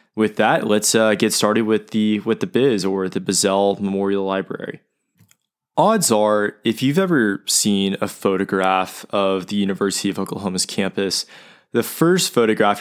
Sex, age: male, 20-39